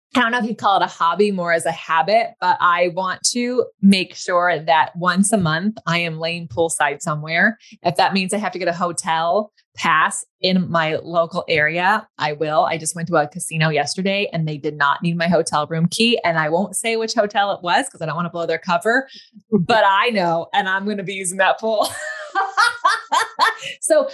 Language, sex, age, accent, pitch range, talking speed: English, female, 20-39, American, 165-215 Hz, 220 wpm